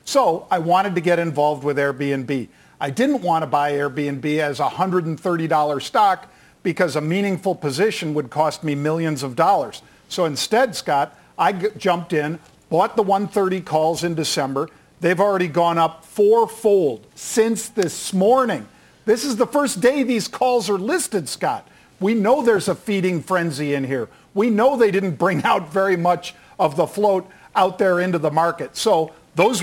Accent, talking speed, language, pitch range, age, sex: American, 175 wpm, English, 160-205 Hz, 50-69, male